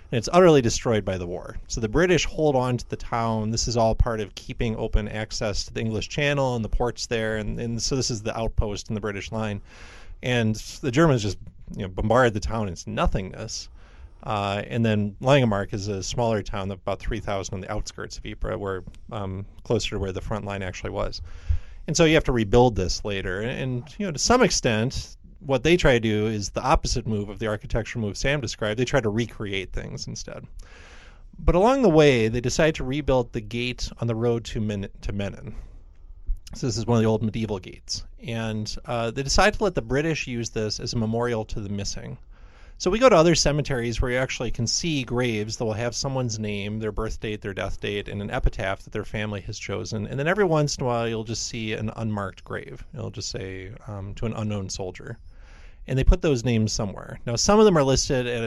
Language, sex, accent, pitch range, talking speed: English, male, American, 100-125 Hz, 230 wpm